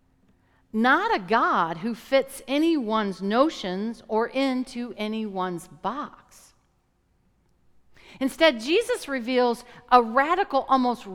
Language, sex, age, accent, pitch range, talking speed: English, female, 50-69, American, 210-300 Hz, 90 wpm